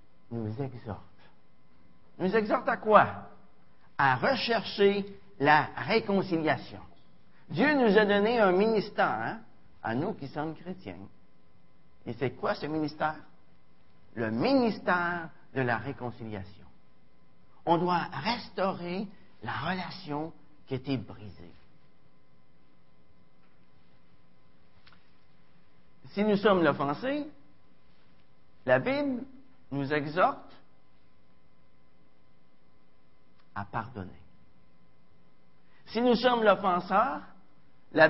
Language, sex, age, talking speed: French, male, 50-69, 90 wpm